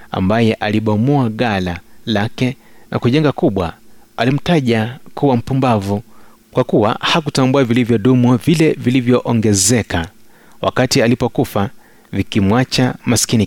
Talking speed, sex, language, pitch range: 90 wpm, male, Swahili, 110-135 Hz